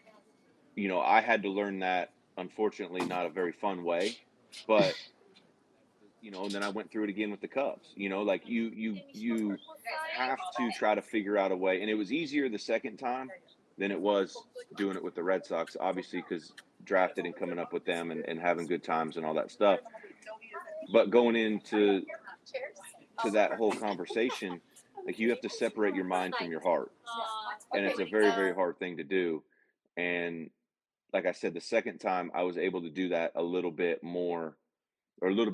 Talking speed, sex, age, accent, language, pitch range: 200 wpm, male, 30-49, American, English, 85-115 Hz